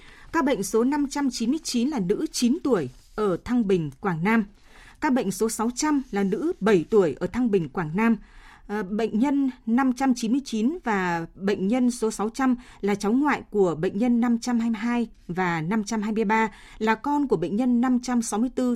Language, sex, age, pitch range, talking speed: Vietnamese, female, 20-39, 200-250 Hz, 155 wpm